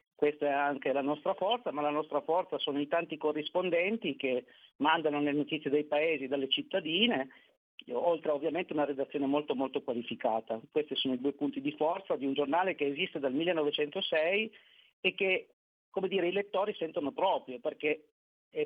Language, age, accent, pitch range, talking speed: Italian, 40-59, native, 140-160 Hz, 175 wpm